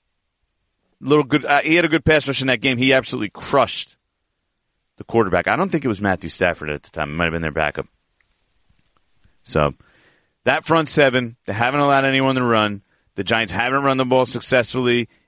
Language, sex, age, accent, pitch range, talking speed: English, male, 30-49, American, 105-155 Hz, 195 wpm